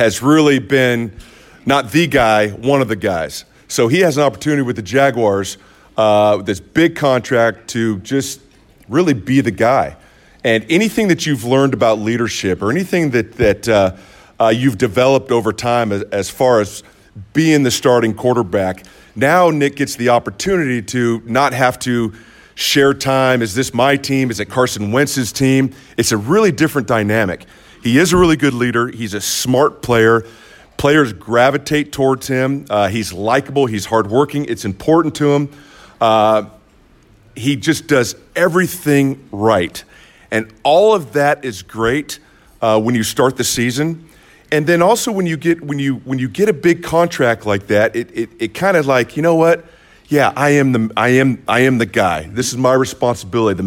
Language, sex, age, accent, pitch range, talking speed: English, male, 40-59, American, 110-140 Hz, 180 wpm